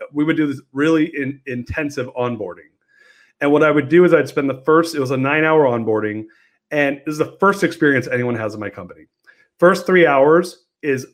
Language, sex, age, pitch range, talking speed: English, male, 30-49, 130-170 Hz, 210 wpm